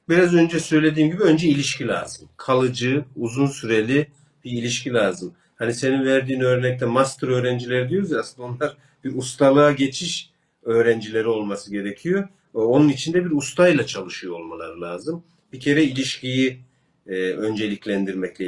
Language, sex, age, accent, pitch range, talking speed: Turkish, male, 50-69, native, 125-165 Hz, 130 wpm